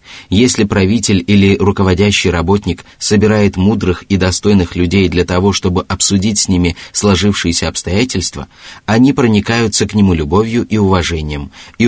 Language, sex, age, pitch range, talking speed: Russian, male, 30-49, 90-110 Hz, 130 wpm